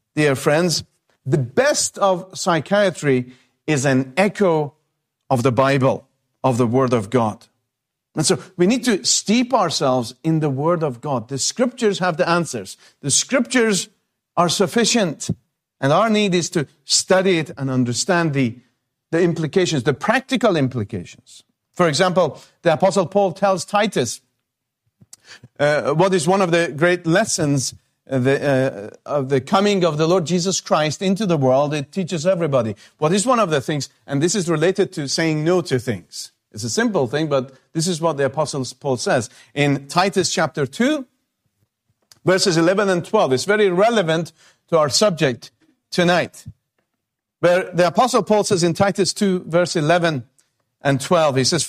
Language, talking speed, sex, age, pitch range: English, 160 wpm, male, 50-69, 135-190 Hz